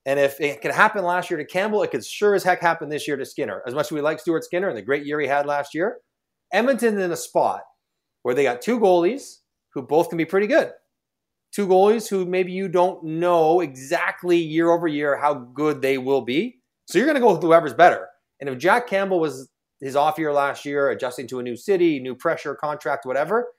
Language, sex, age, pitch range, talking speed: English, male, 30-49, 145-190 Hz, 235 wpm